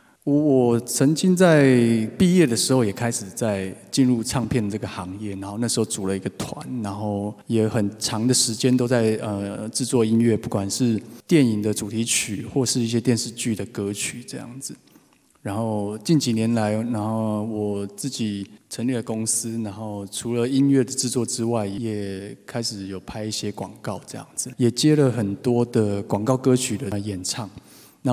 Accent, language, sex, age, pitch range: native, Chinese, male, 20-39, 105-125 Hz